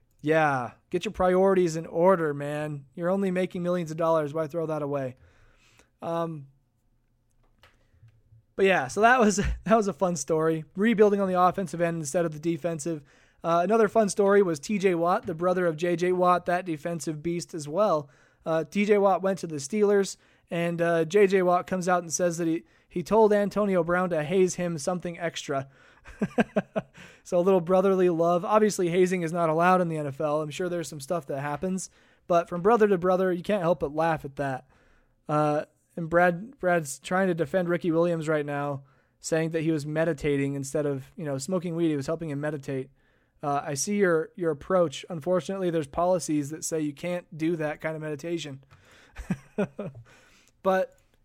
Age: 20-39